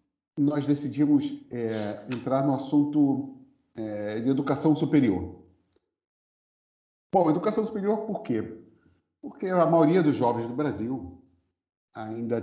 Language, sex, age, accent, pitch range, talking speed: Portuguese, male, 40-59, Brazilian, 110-145 Hz, 110 wpm